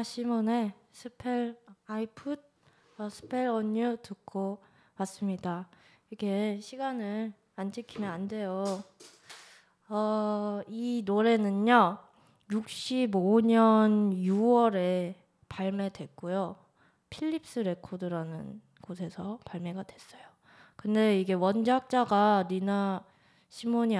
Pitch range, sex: 190-235 Hz, female